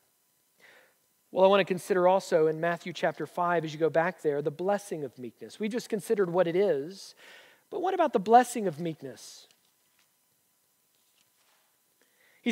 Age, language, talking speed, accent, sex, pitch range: 40-59, English, 160 wpm, American, male, 195-255 Hz